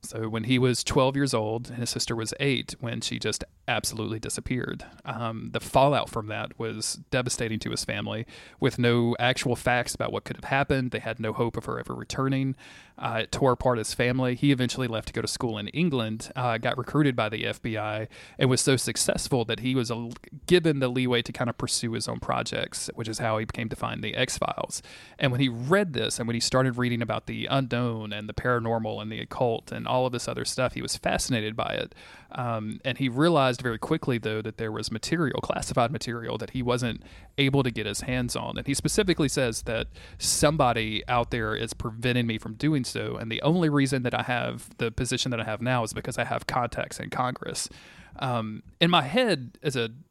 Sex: male